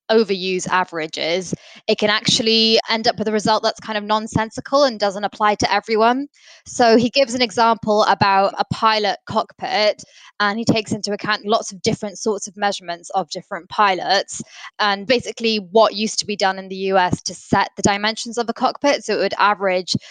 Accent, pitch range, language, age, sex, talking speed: British, 190-220 Hz, English, 20-39, female, 190 wpm